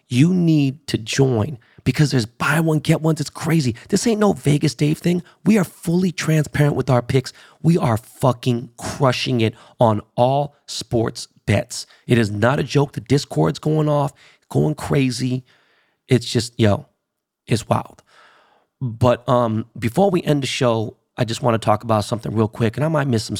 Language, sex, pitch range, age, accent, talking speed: English, male, 115-140 Hz, 30-49, American, 180 wpm